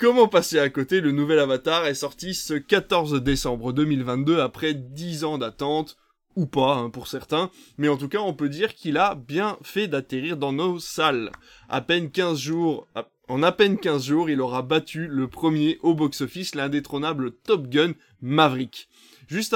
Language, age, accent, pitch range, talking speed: French, 20-39, French, 140-165 Hz, 175 wpm